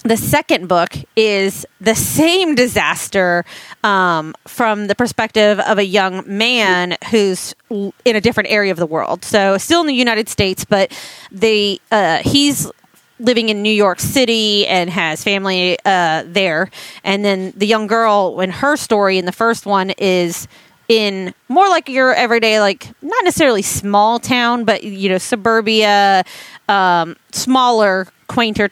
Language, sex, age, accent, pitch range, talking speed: English, female, 30-49, American, 185-225 Hz, 150 wpm